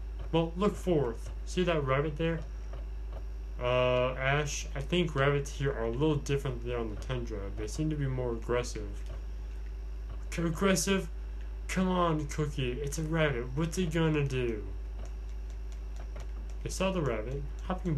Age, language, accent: 20-39, English, American